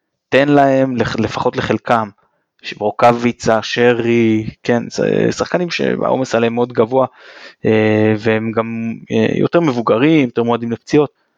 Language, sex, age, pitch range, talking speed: Hebrew, male, 20-39, 115-150 Hz, 100 wpm